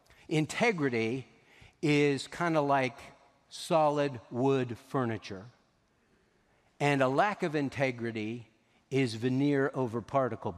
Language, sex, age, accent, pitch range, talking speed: English, male, 60-79, American, 135-180 Hz, 95 wpm